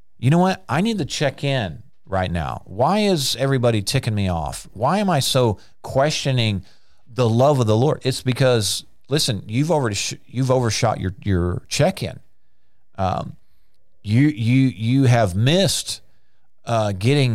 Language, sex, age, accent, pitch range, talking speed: English, male, 40-59, American, 100-130 Hz, 155 wpm